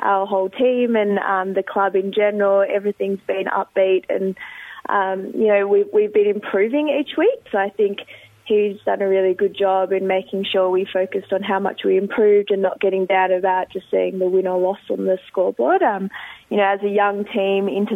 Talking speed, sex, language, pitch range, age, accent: 205 wpm, female, English, 190-210 Hz, 20-39, Australian